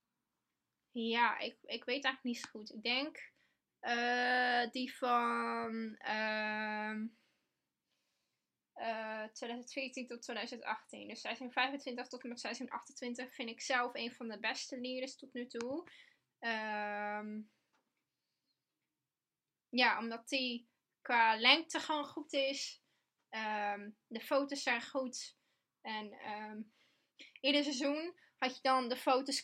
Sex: female